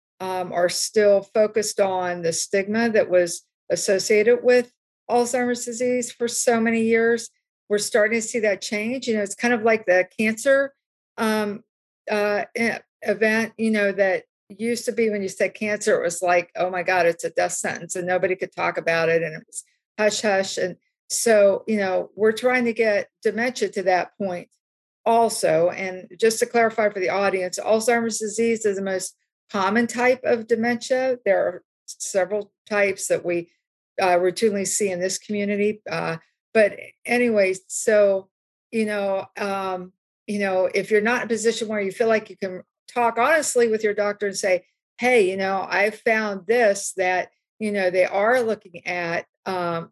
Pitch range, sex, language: 185-230 Hz, female, English